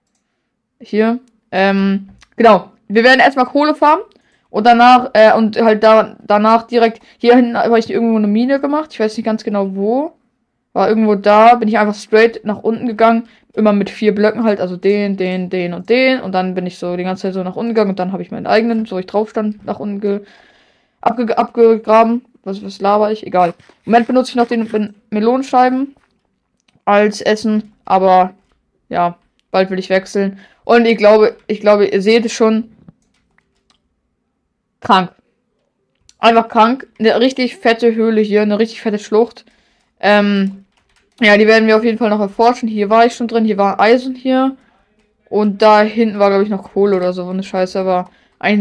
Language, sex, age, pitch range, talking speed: German, female, 20-39, 195-230 Hz, 190 wpm